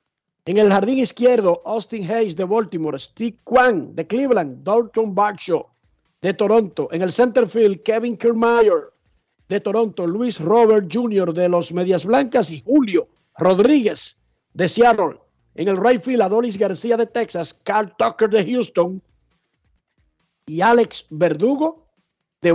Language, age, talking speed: Spanish, 50-69, 140 wpm